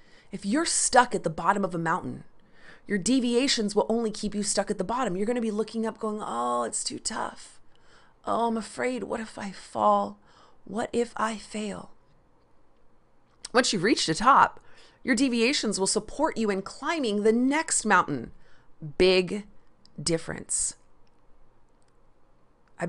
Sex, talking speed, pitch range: female, 155 wpm, 180-240 Hz